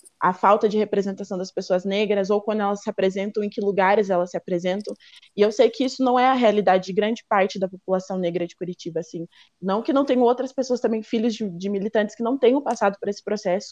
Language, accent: Portuguese, Brazilian